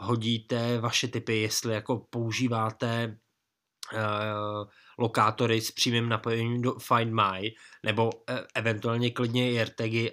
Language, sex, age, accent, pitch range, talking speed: Czech, male, 20-39, native, 110-130 Hz, 120 wpm